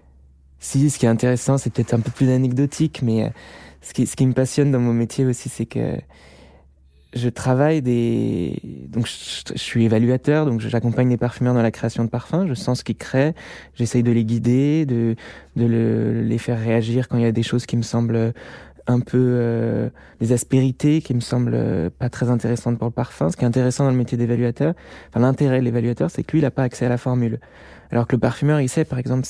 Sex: male